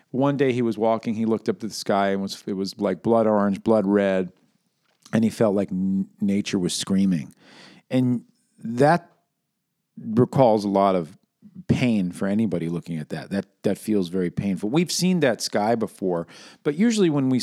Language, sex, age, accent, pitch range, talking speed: English, male, 50-69, American, 100-130 Hz, 180 wpm